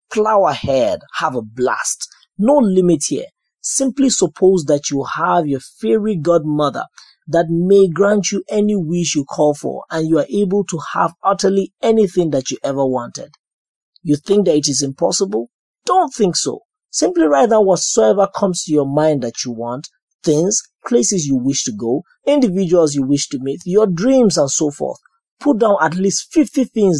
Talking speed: 175 wpm